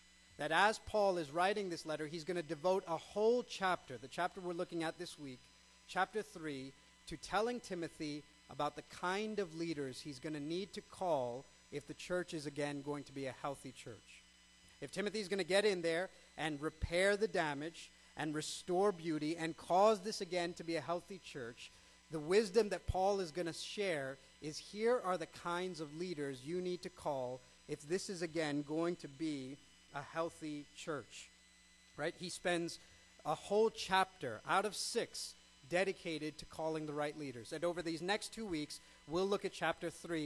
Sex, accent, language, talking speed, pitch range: male, American, English, 190 wpm, 150-185 Hz